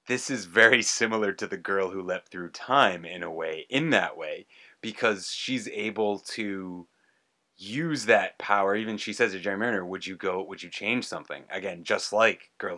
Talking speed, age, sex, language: 195 wpm, 30-49, male, English